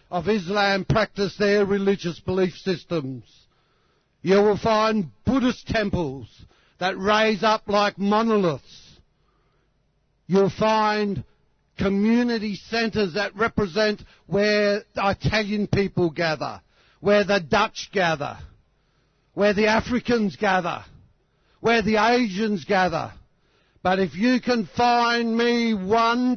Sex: male